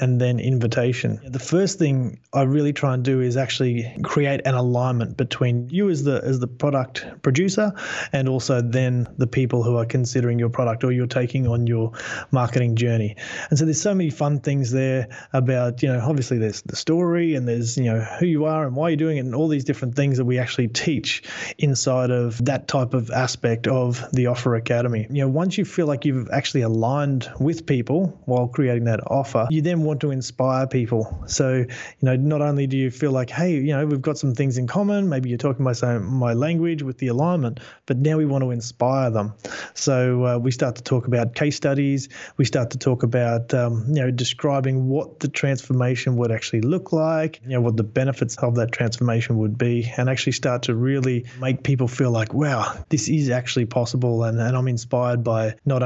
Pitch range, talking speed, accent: 120-145 Hz, 210 wpm, Australian